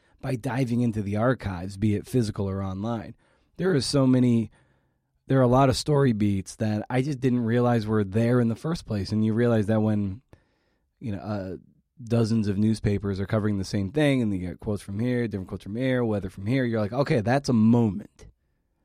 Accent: American